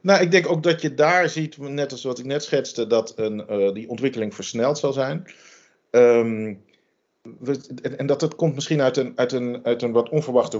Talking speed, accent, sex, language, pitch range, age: 175 wpm, Dutch, male, Dutch, 110-145 Hz, 40-59